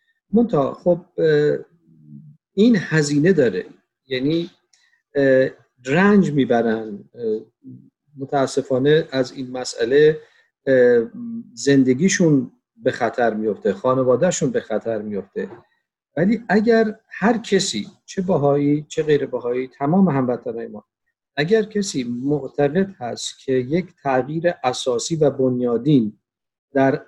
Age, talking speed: 50-69, 95 wpm